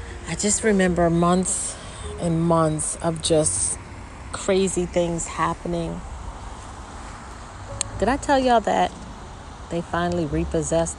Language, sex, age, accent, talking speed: English, female, 30-49, American, 105 wpm